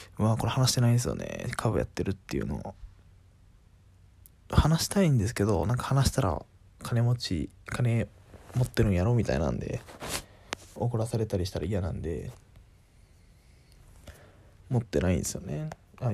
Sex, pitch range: male, 95-125 Hz